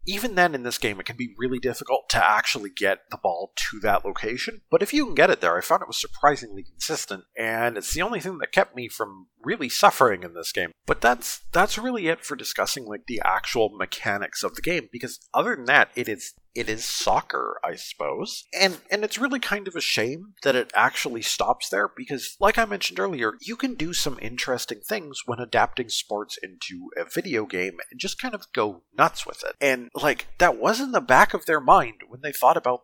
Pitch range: 120-185 Hz